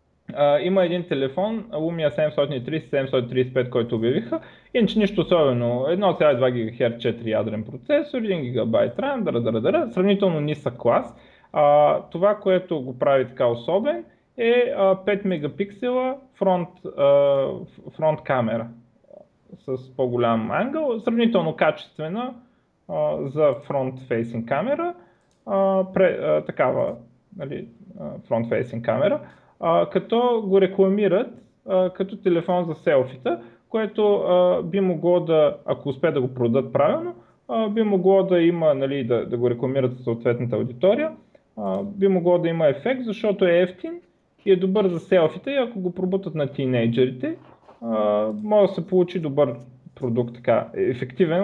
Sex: male